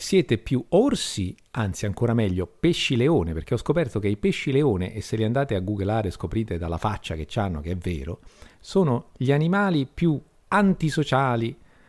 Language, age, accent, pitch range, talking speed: Italian, 50-69, native, 90-130 Hz, 170 wpm